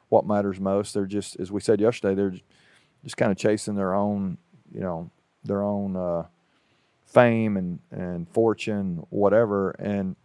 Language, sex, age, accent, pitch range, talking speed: English, male, 40-59, American, 100-115 Hz, 160 wpm